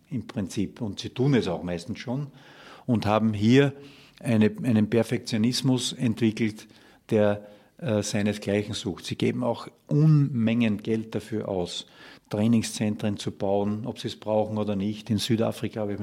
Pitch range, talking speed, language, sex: 105-120 Hz, 140 wpm, German, male